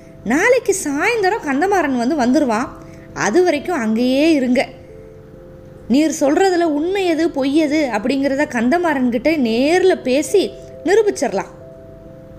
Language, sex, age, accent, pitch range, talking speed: Tamil, female, 20-39, native, 235-340 Hz, 90 wpm